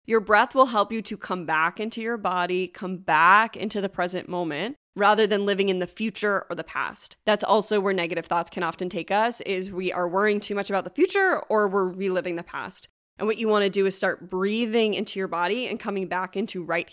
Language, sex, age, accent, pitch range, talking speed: English, female, 20-39, American, 180-215 Hz, 230 wpm